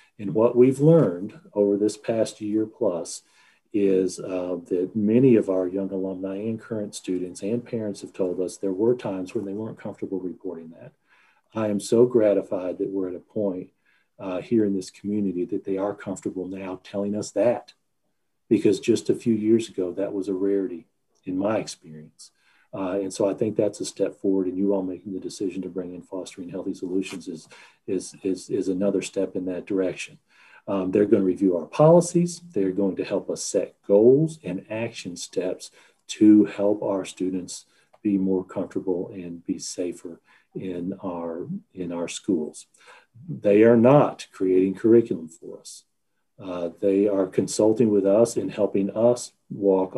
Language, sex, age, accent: English, male, 40-59, American